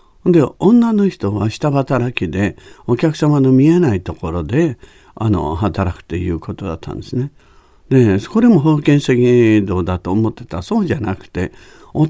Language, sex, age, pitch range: Japanese, male, 50-69, 95-140 Hz